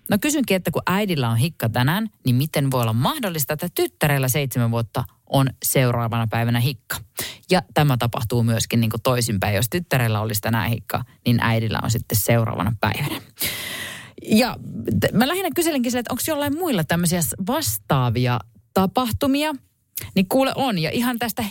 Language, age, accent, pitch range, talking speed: Finnish, 30-49, native, 120-185 Hz, 155 wpm